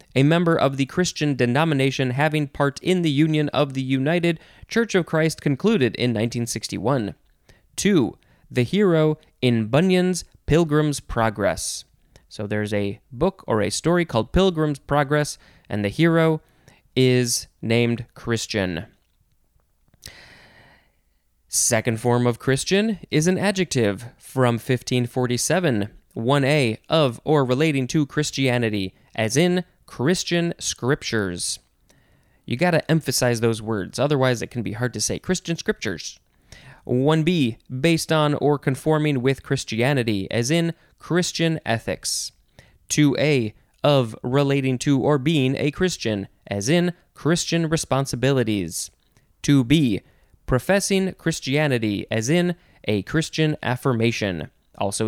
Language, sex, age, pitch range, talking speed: English, male, 20-39, 115-160 Hz, 120 wpm